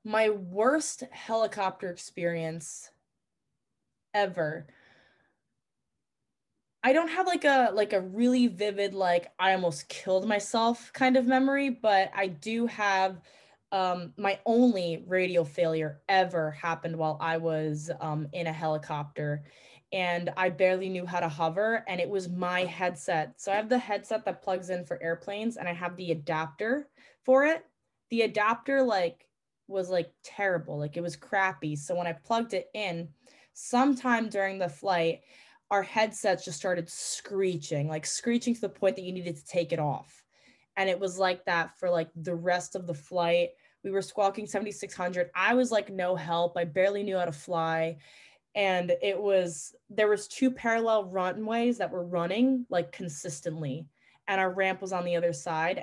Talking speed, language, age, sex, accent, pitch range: 165 wpm, English, 20-39, female, American, 170-210 Hz